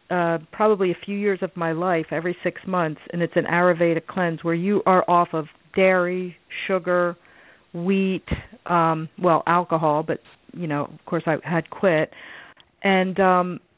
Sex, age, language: female, 40-59, English